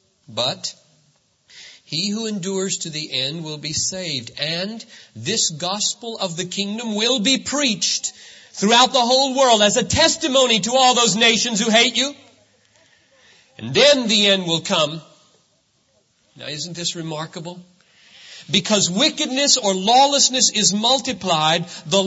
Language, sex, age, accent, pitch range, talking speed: English, male, 50-69, American, 185-250 Hz, 135 wpm